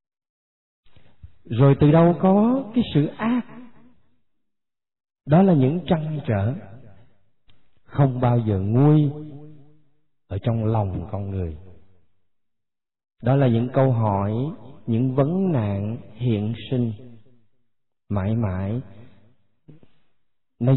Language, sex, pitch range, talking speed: Vietnamese, male, 100-135 Hz, 100 wpm